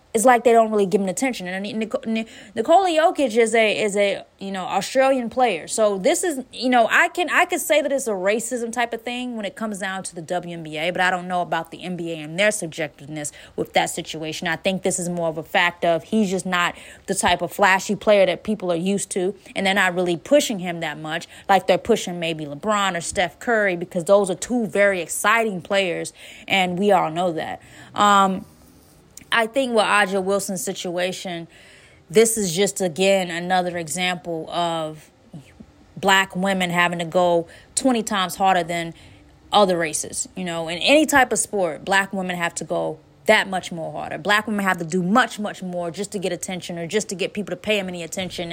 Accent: American